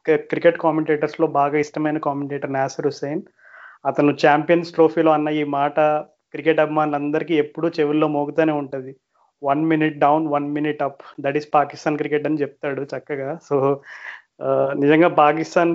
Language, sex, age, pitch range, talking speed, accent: Telugu, male, 30-49, 145-165 Hz, 135 wpm, native